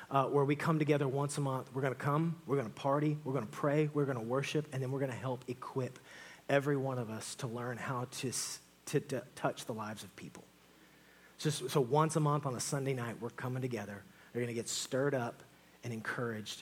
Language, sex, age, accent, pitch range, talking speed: English, male, 30-49, American, 115-145 Hz, 240 wpm